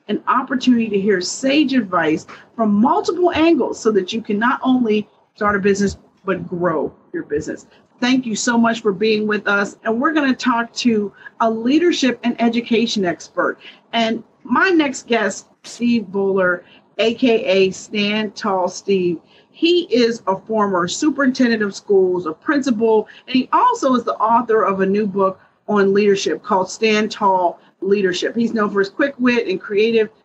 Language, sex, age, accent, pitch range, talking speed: English, female, 40-59, American, 200-255 Hz, 165 wpm